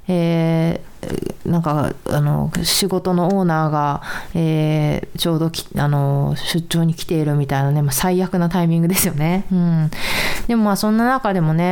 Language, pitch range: Japanese, 165-210 Hz